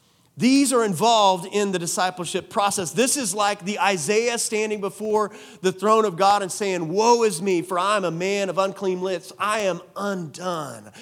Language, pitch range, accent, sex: English, 175-220 Hz, American, male